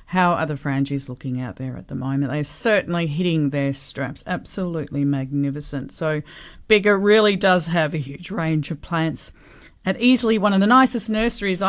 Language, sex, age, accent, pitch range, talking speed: English, female, 40-59, Australian, 150-195 Hz, 175 wpm